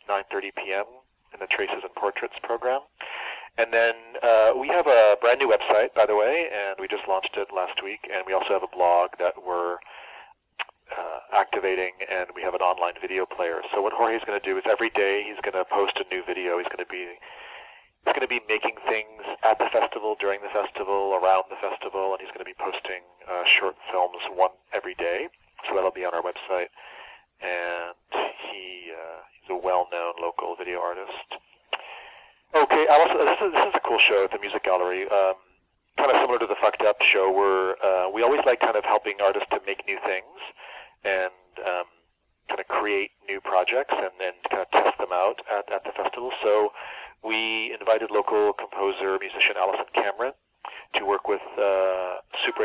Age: 40-59